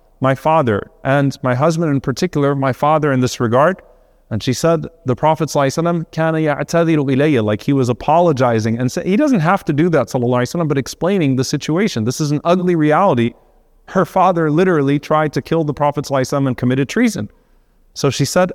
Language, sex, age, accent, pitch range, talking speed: English, male, 30-49, American, 125-160 Hz, 185 wpm